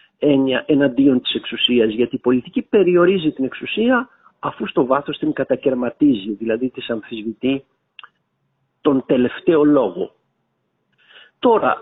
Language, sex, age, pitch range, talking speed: Greek, male, 50-69, 140-190 Hz, 110 wpm